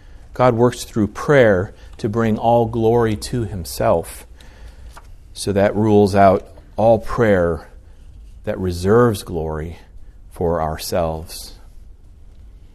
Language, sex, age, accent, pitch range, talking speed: English, male, 40-59, American, 85-125 Hz, 100 wpm